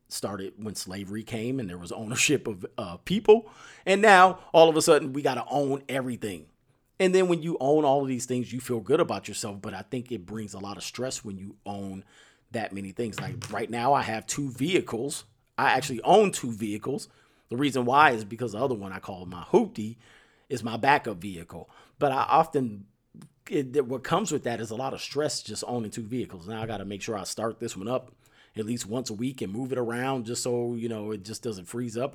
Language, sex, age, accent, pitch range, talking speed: English, male, 40-59, American, 105-135 Hz, 235 wpm